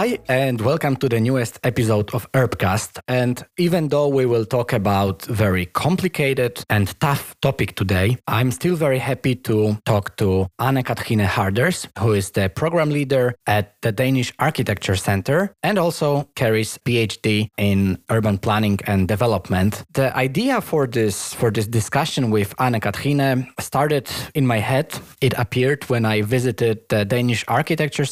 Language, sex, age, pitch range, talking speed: Polish, male, 20-39, 105-135 Hz, 160 wpm